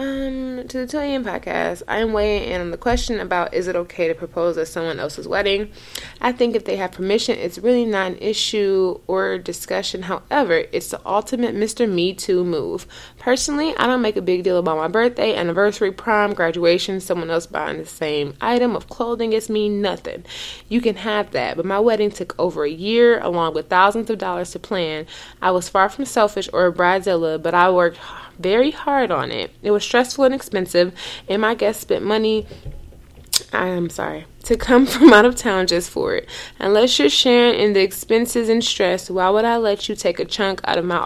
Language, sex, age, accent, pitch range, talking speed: English, female, 20-39, American, 175-225 Hz, 210 wpm